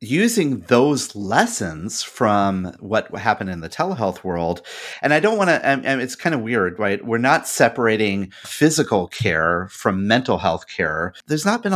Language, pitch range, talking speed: English, 100-135 Hz, 175 wpm